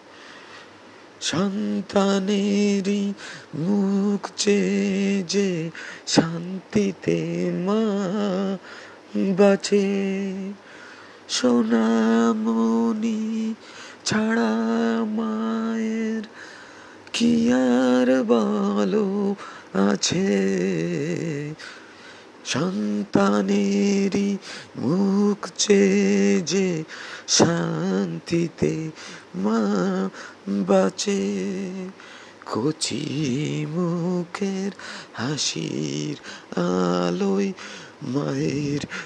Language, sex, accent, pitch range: Bengali, male, native, 160-205 Hz